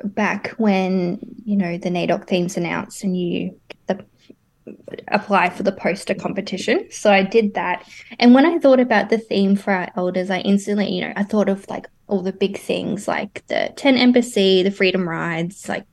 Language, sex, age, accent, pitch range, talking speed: English, female, 20-39, Australian, 185-220 Hz, 185 wpm